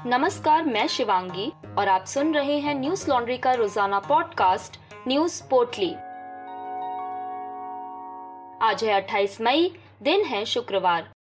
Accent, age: native, 20-39